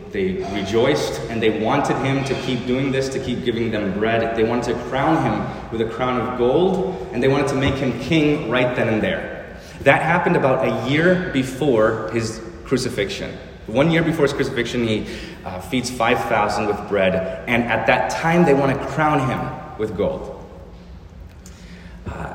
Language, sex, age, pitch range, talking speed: English, male, 30-49, 105-140 Hz, 180 wpm